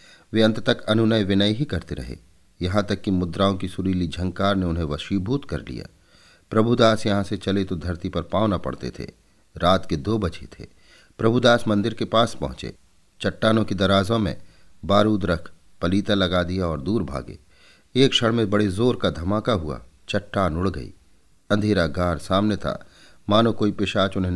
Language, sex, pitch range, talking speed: Hindi, male, 85-105 Hz, 175 wpm